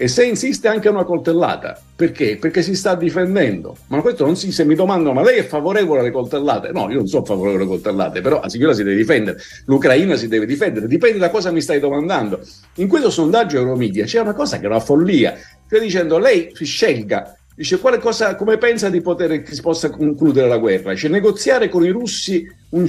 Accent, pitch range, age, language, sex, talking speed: native, 145-205 Hz, 50-69, Italian, male, 215 wpm